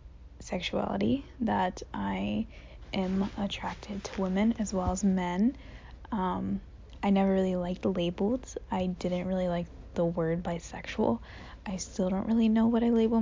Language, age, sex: English, 20-39, female